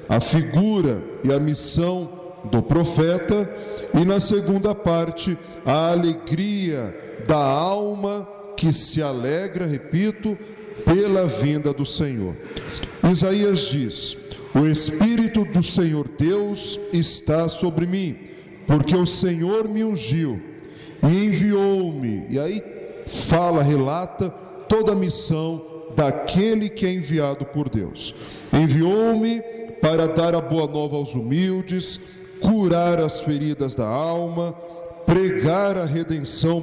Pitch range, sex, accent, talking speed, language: 155-195 Hz, male, Brazilian, 115 wpm, Portuguese